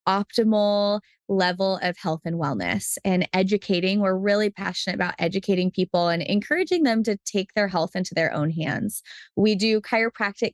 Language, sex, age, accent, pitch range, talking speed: English, female, 20-39, American, 175-205 Hz, 160 wpm